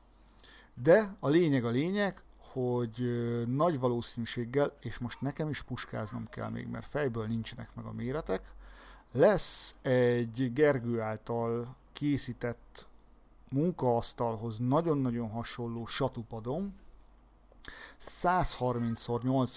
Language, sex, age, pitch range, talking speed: Hungarian, male, 50-69, 120-140 Hz, 95 wpm